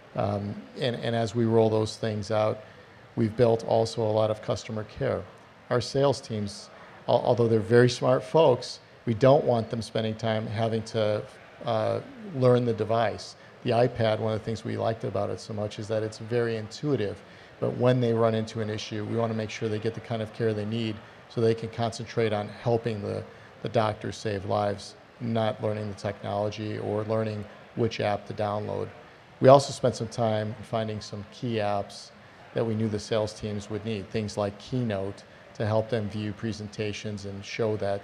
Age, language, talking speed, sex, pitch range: 50-69, Italian, 195 wpm, male, 105-120 Hz